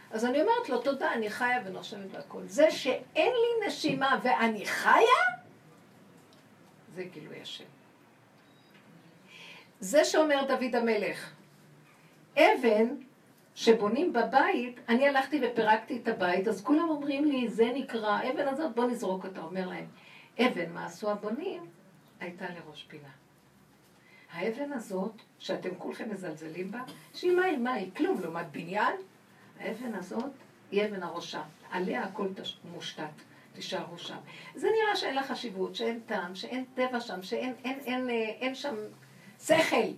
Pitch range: 190-265 Hz